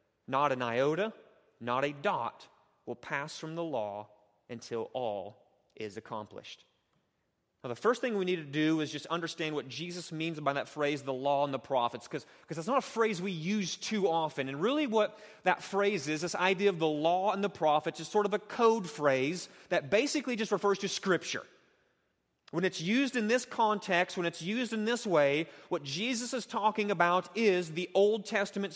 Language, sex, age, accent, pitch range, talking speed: English, male, 30-49, American, 160-205 Hz, 200 wpm